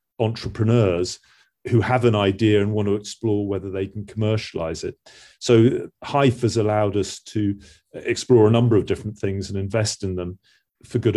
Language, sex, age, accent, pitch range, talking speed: English, male, 40-59, British, 100-115 Hz, 170 wpm